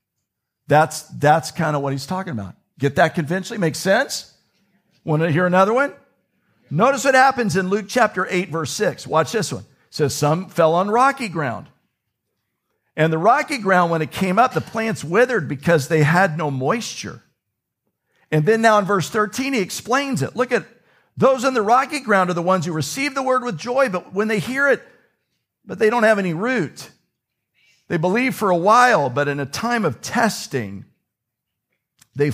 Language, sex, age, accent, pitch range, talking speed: English, male, 50-69, American, 155-220 Hz, 185 wpm